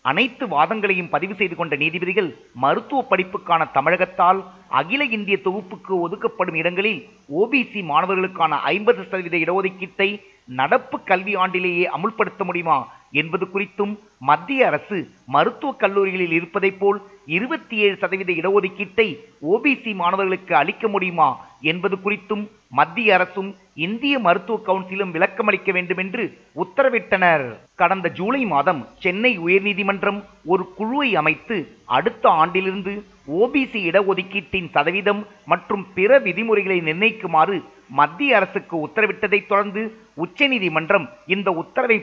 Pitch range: 180-215 Hz